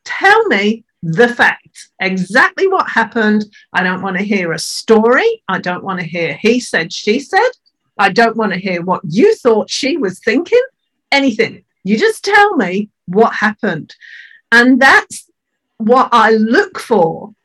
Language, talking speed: English, 160 wpm